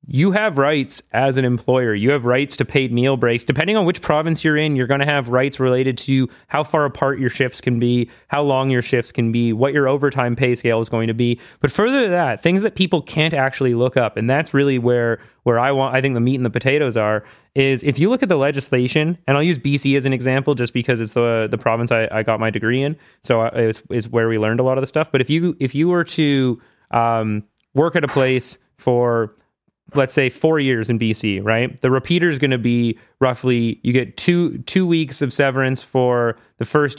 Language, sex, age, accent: English, male, 30-49, American